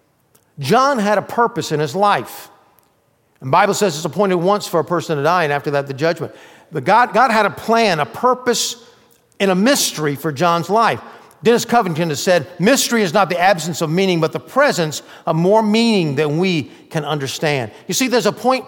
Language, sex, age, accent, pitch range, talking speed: English, male, 50-69, American, 155-220 Hz, 200 wpm